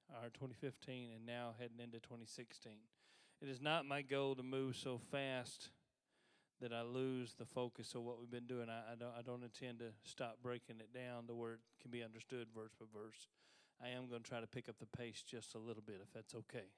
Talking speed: 220 wpm